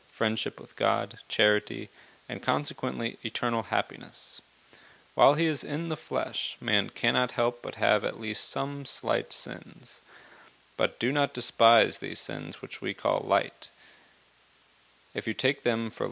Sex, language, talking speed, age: male, English, 145 wpm, 30-49